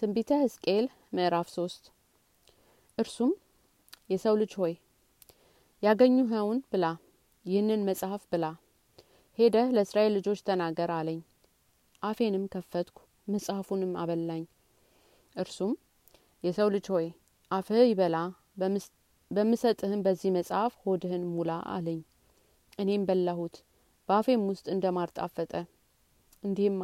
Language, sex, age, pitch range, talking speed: Amharic, female, 30-49, 175-210 Hz, 85 wpm